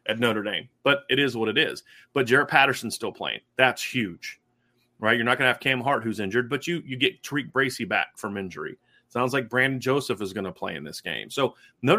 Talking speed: 240 wpm